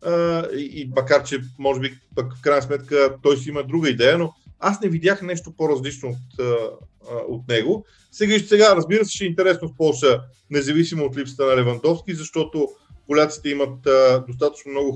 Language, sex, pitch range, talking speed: Bulgarian, male, 130-180 Hz, 170 wpm